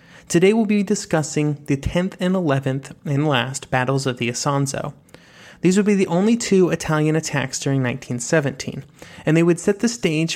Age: 30-49